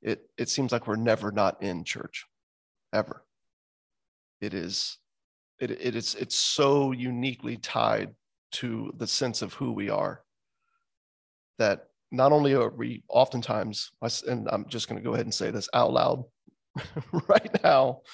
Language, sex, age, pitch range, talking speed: English, male, 30-49, 110-140 Hz, 150 wpm